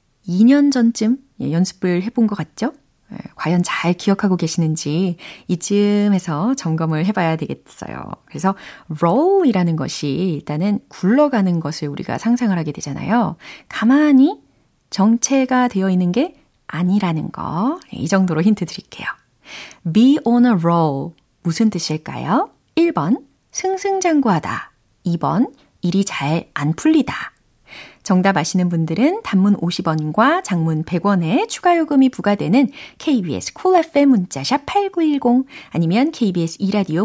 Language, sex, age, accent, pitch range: Korean, female, 30-49, native, 170-260 Hz